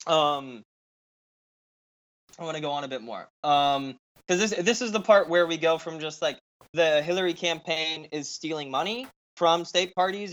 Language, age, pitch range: English, 20-39, 150-185 Hz